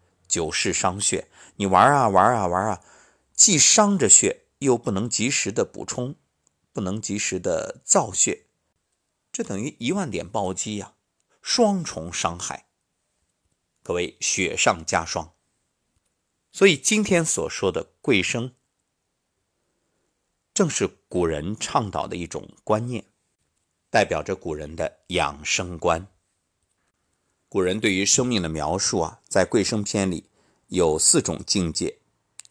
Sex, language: male, Chinese